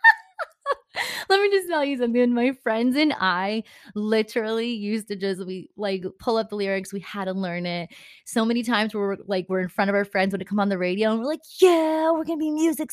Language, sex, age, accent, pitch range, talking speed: English, female, 20-39, American, 185-245 Hz, 220 wpm